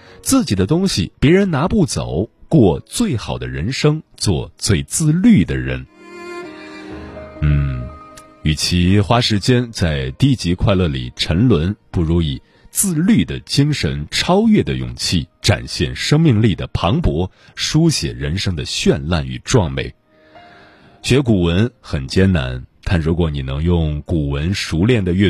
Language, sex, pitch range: Chinese, male, 80-120 Hz